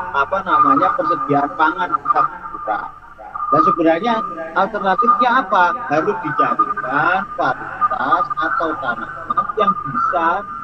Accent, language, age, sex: native, Indonesian, 30-49, male